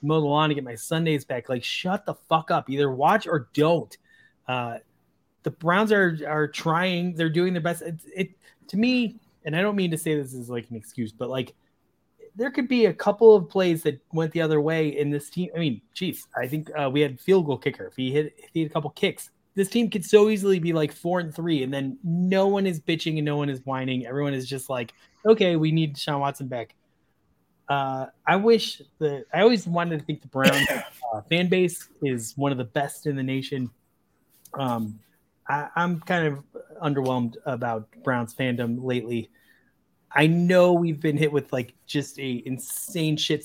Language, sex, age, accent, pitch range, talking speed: English, male, 30-49, American, 130-175 Hz, 210 wpm